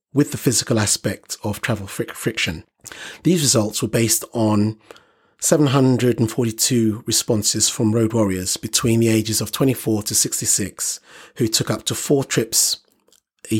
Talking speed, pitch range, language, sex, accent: 135 wpm, 110-145 Hz, English, male, British